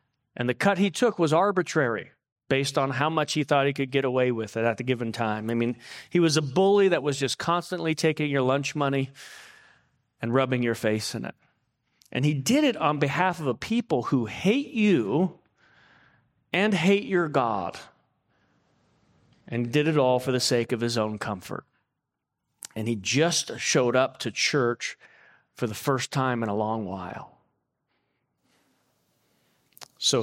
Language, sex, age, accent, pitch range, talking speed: English, male, 40-59, American, 120-150 Hz, 170 wpm